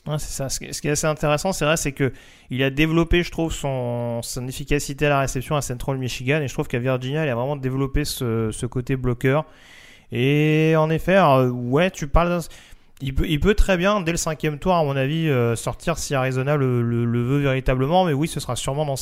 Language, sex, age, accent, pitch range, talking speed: French, male, 30-49, French, 125-155 Hz, 225 wpm